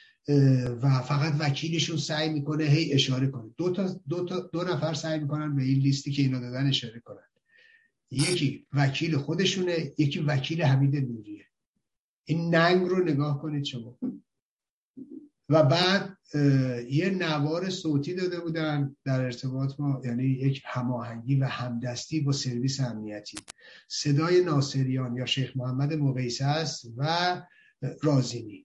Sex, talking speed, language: male, 135 wpm, Persian